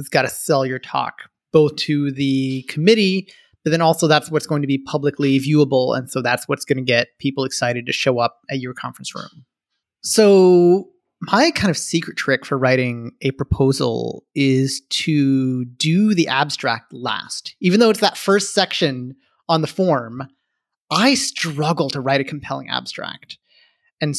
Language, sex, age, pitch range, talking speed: English, male, 30-49, 135-170 Hz, 170 wpm